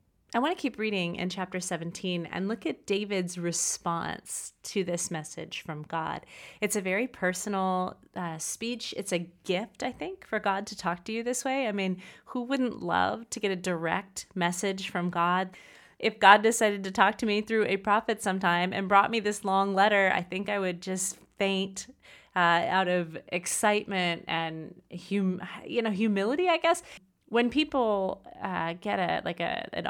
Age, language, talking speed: 30-49, English, 180 wpm